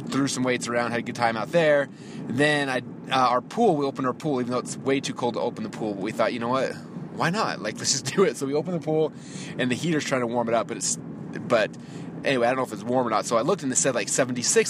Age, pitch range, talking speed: 20-39, 130-180 Hz, 310 wpm